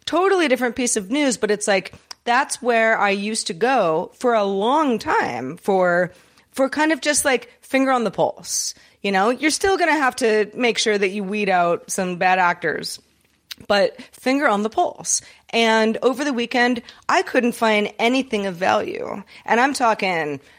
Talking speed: 185 wpm